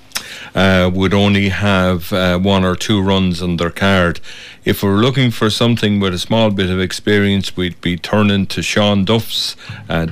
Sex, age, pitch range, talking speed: male, 40-59, 90-105 Hz, 180 wpm